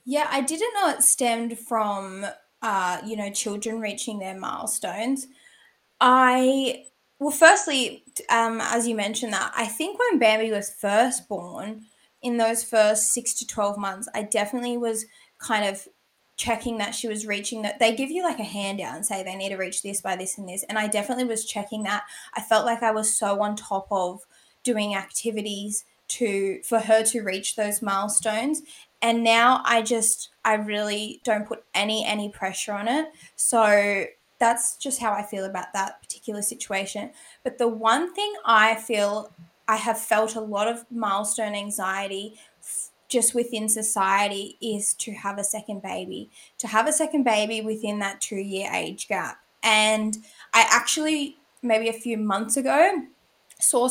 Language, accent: English, Australian